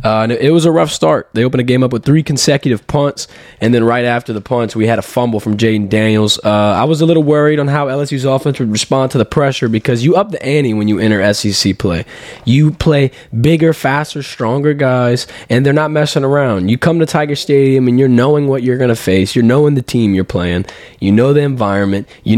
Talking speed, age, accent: 235 wpm, 20-39, American